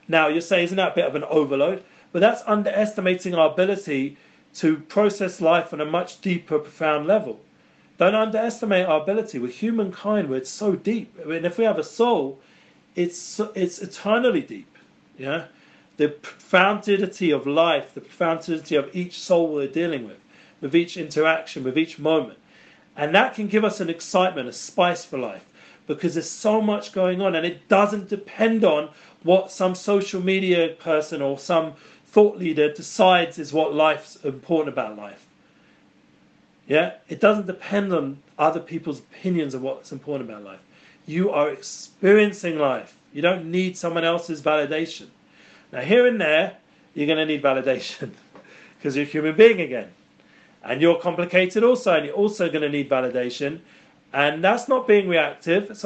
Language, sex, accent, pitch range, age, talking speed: English, male, British, 155-200 Hz, 40-59, 170 wpm